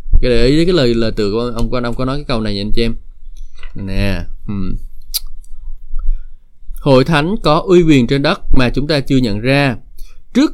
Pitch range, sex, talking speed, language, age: 110-150 Hz, male, 205 wpm, Vietnamese, 20-39